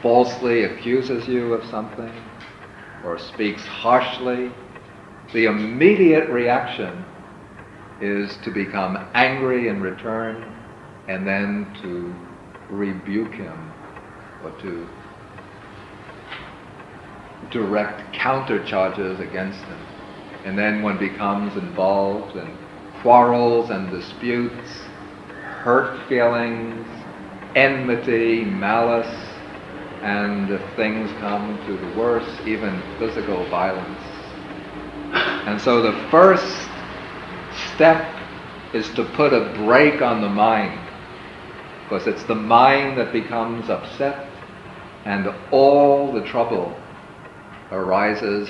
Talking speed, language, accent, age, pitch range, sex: 95 wpm, English, American, 50-69, 100-125 Hz, male